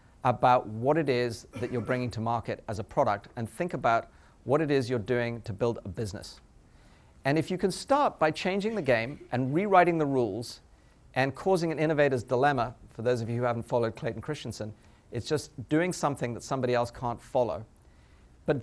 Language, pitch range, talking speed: English, 115-150 Hz, 195 wpm